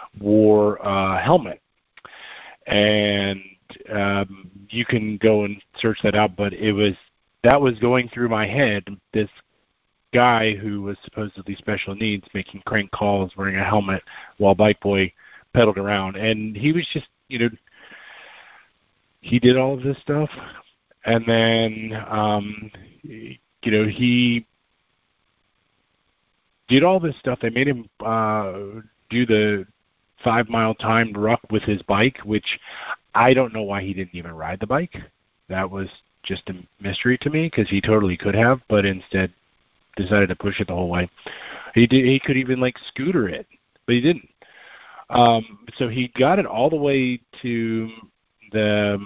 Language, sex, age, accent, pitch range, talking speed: English, male, 50-69, American, 100-120 Hz, 155 wpm